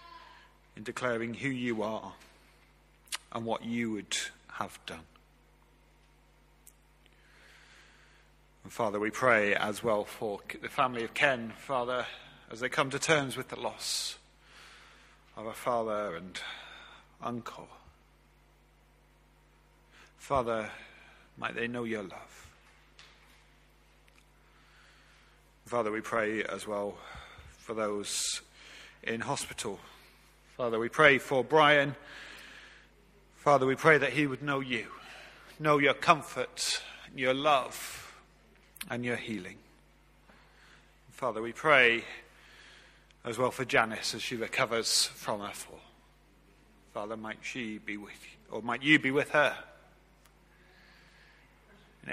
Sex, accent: male, British